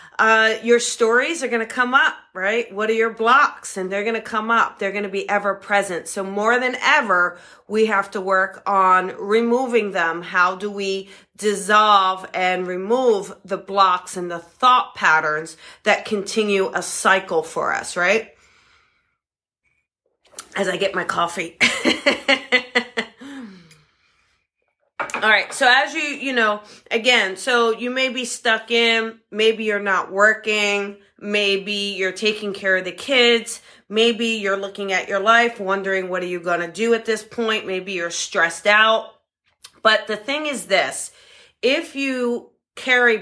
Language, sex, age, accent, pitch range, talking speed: English, female, 40-59, American, 195-235 Hz, 155 wpm